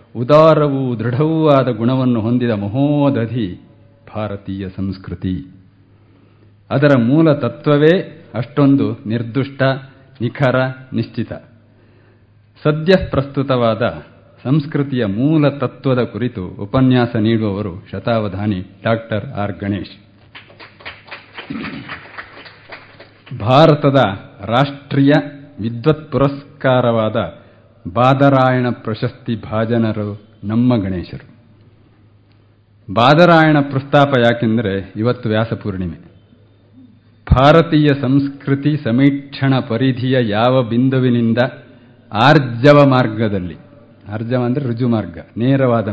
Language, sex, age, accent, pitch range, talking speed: Kannada, male, 50-69, native, 110-135 Hz, 70 wpm